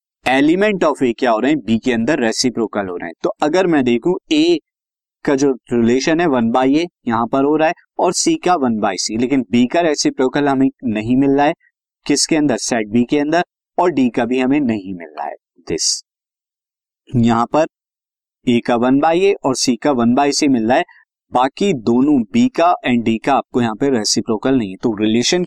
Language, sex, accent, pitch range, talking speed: Hindi, male, native, 115-170 Hz, 205 wpm